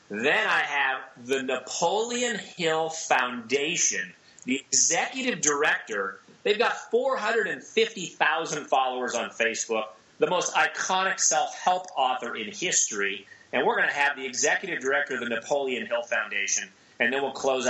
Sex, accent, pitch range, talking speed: male, American, 130-170 Hz, 135 wpm